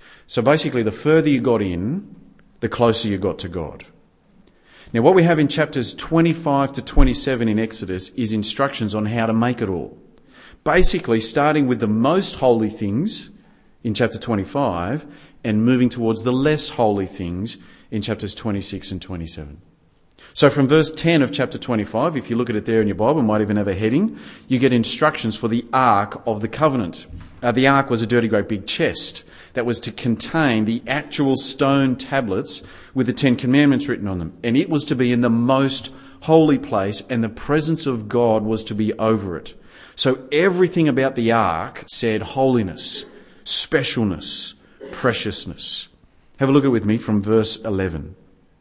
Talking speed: 185 wpm